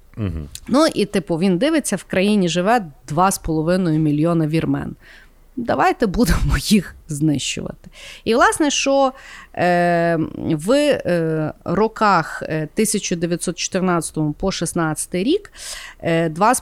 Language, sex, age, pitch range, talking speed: Ukrainian, female, 30-49, 160-215 Hz, 85 wpm